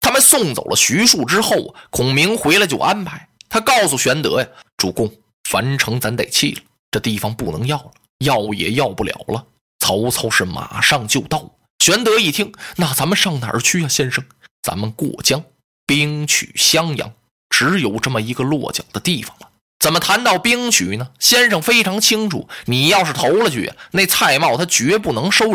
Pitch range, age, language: 135-215 Hz, 20-39, Chinese